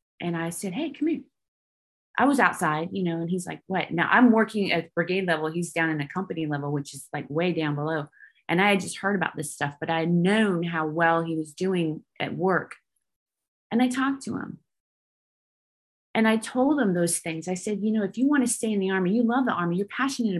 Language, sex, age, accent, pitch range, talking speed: English, female, 30-49, American, 175-230 Hz, 240 wpm